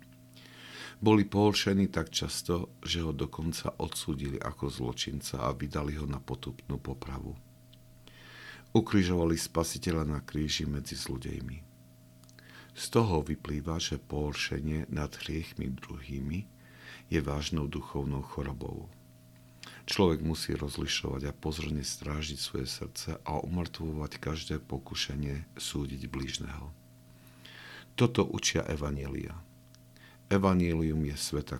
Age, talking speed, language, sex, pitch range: 50-69, 105 wpm, Slovak, male, 65-85 Hz